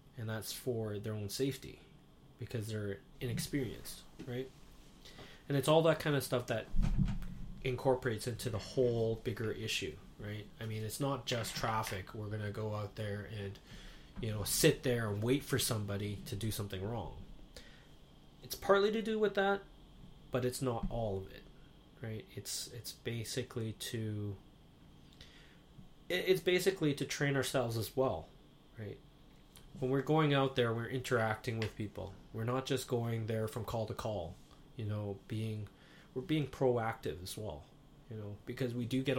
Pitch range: 110-130 Hz